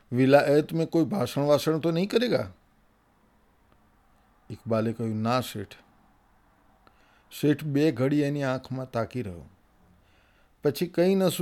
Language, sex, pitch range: Gujarati, male, 105-145 Hz